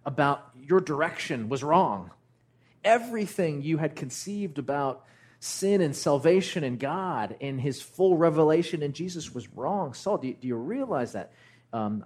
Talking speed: 145 wpm